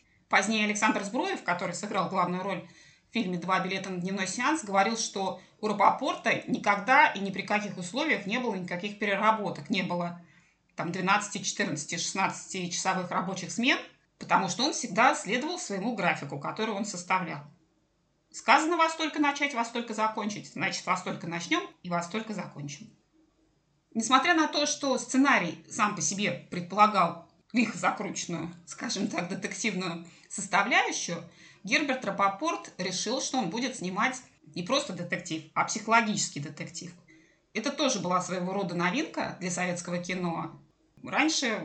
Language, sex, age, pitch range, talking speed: Russian, female, 20-39, 175-225 Hz, 140 wpm